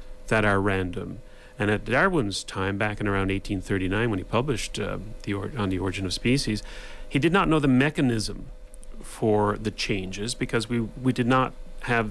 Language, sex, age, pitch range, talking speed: English, male, 40-59, 105-140 Hz, 185 wpm